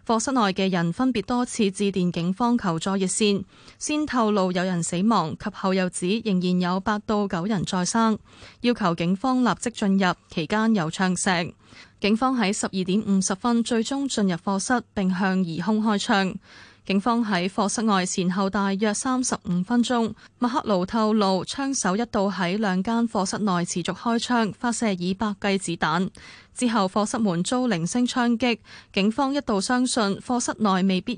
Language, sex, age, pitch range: Chinese, female, 20-39, 185-230 Hz